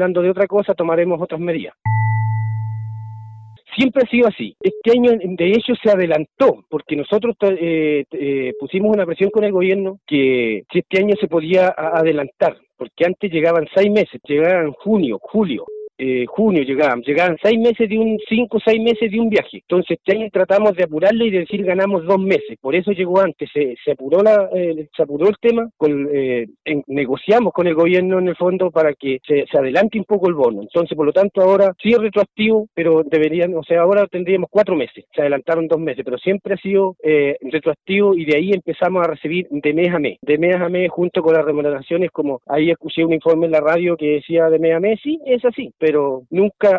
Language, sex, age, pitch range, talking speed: Spanish, male, 40-59, 155-200 Hz, 205 wpm